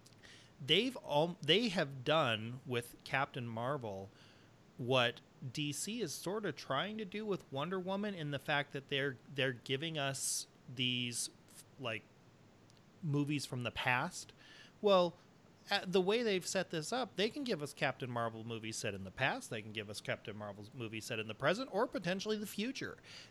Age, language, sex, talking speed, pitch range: 30-49, English, male, 170 wpm, 125-170 Hz